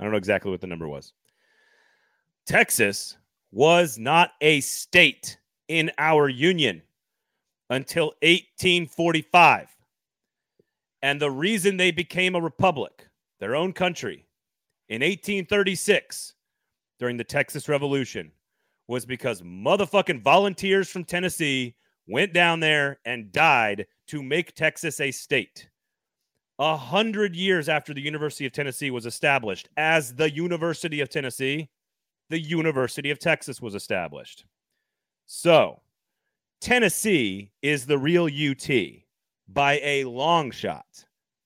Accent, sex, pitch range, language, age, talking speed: American, male, 125-175 Hz, English, 30-49, 115 wpm